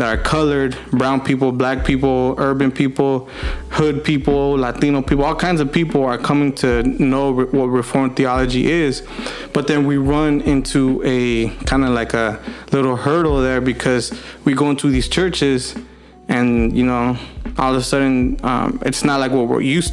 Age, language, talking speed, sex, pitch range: 20-39, English, 175 wpm, male, 125-140 Hz